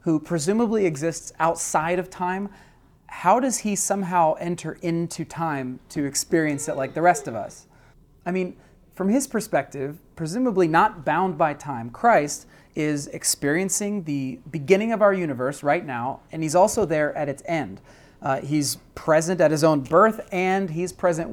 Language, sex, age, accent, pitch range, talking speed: English, male, 30-49, American, 145-190 Hz, 165 wpm